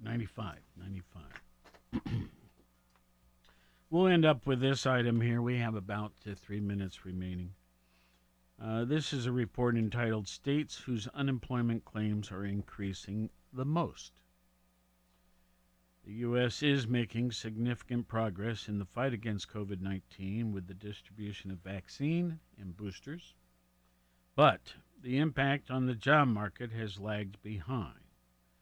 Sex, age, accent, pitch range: male, 50-69, American, 85-125 Hz